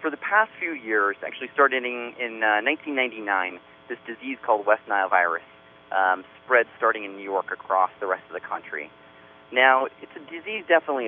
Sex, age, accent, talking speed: male, 30-49, American, 185 wpm